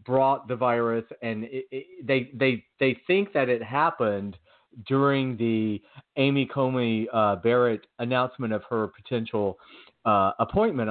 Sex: male